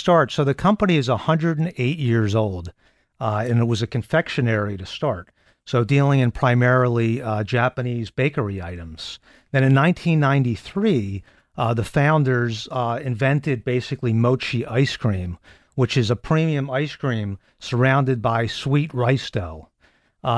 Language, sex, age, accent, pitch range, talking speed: English, male, 50-69, American, 120-145 Hz, 140 wpm